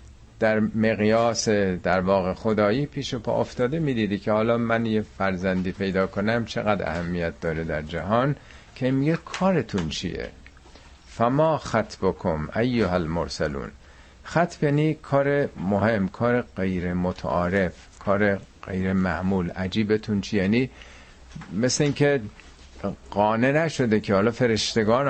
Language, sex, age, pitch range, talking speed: Persian, male, 50-69, 95-140 Hz, 110 wpm